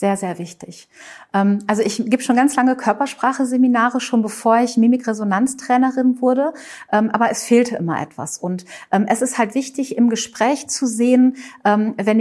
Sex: female